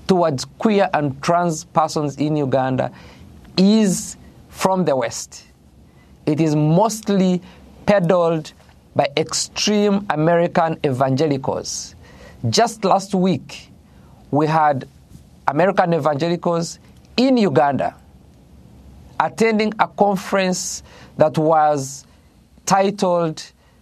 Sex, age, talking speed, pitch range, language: male, 50-69, 85 wpm, 135-190 Hz, English